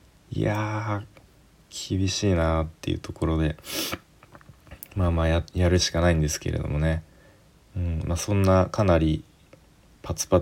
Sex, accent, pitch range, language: male, native, 80-105 Hz, Japanese